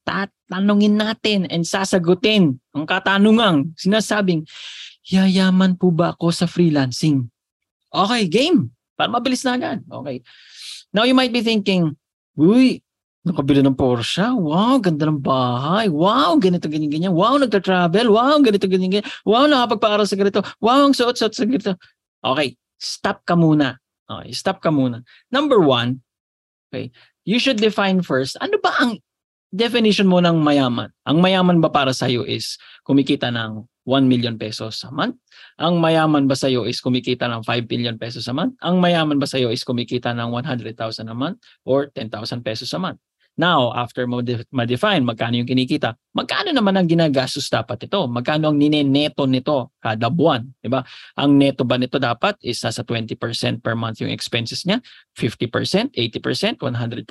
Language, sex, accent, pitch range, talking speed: English, male, Filipino, 125-195 Hz, 155 wpm